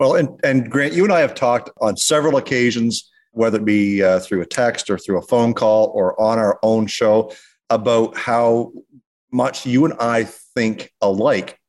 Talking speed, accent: 190 wpm, American